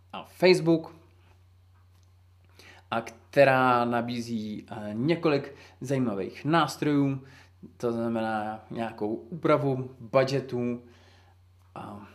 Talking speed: 65 wpm